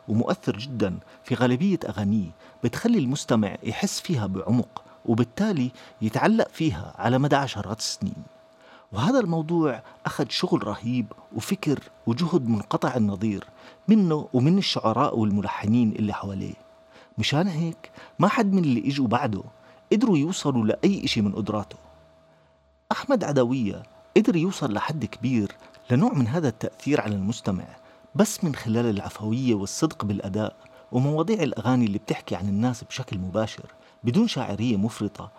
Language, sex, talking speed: Arabic, male, 125 wpm